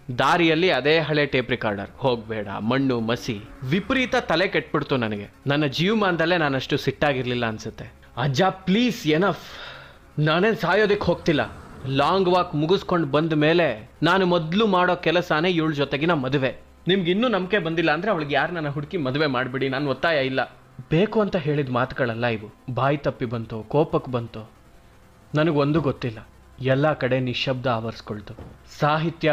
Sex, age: male, 30-49